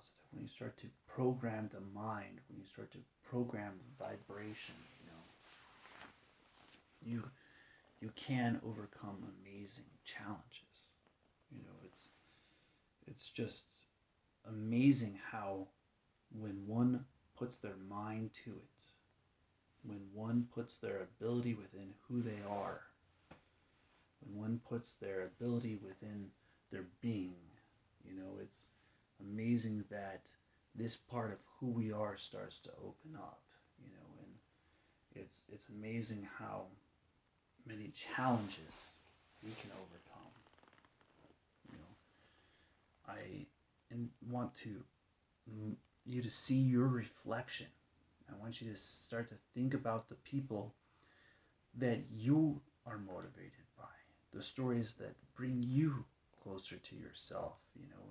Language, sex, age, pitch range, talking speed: English, male, 30-49, 100-120 Hz, 120 wpm